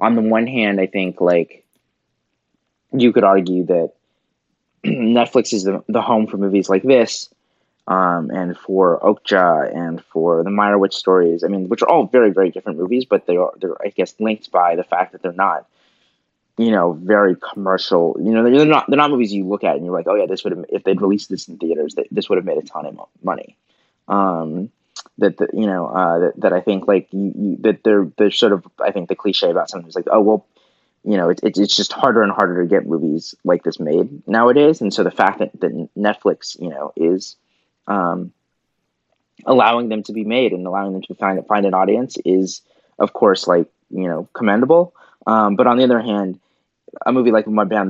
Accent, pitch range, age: American, 95-110 Hz, 20-39